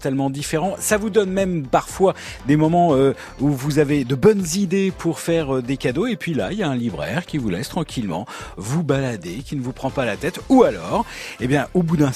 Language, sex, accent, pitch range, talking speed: French, male, French, 135-165 Hz, 240 wpm